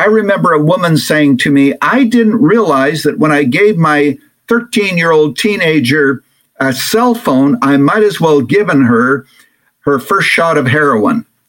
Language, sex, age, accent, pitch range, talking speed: English, male, 60-79, American, 140-230 Hz, 165 wpm